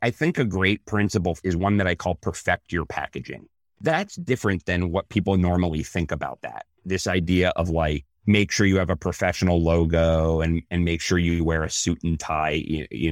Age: 30-49